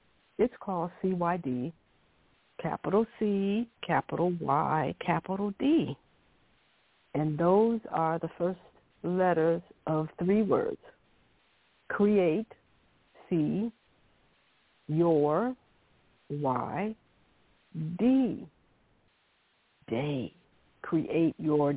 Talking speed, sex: 70 wpm, female